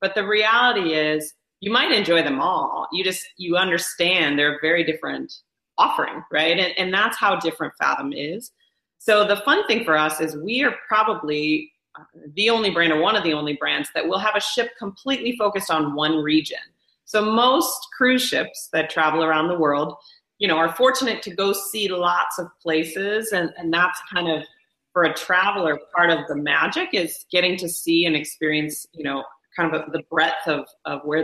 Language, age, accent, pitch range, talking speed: English, 30-49, American, 155-210 Hz, 195 wpm